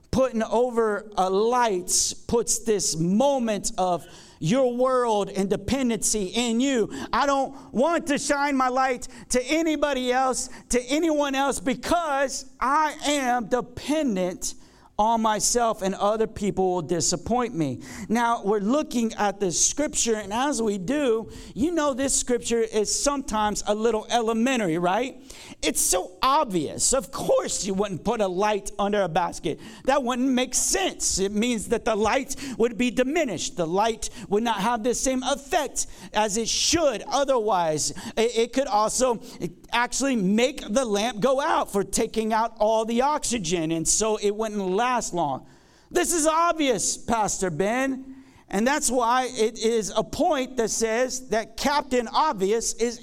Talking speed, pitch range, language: 155 wpm, 215-275 Hz, English